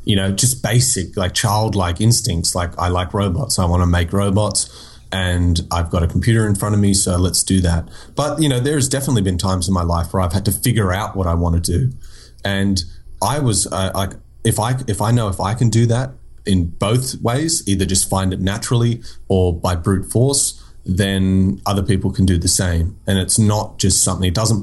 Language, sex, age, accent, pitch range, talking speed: English, male, 30-49, Australian, 90-110 Hz, 220 wpm